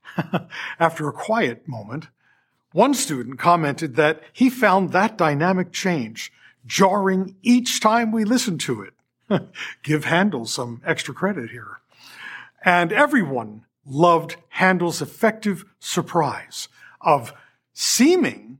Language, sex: English, male